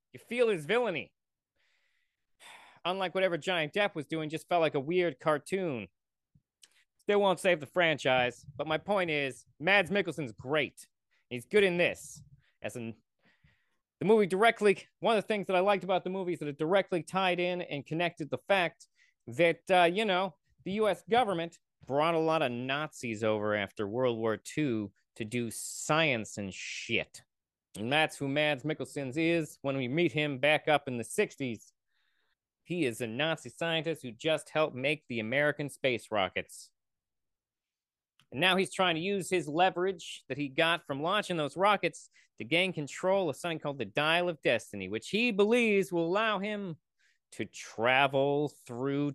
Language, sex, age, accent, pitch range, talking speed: English, male, 30-49, American, 130-180 Hz, 170 wpm